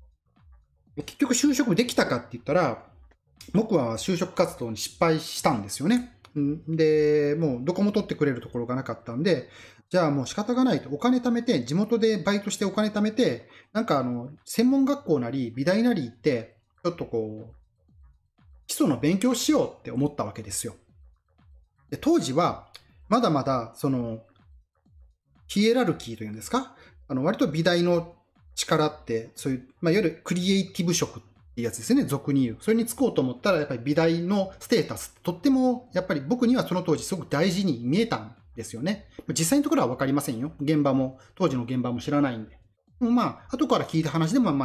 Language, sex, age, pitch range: Japanese, male, 30-49, 115-195 Hz